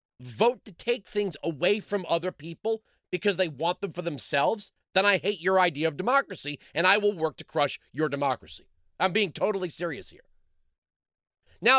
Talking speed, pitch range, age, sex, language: 180 wpm, 160-225 Hz, 30-49, male, English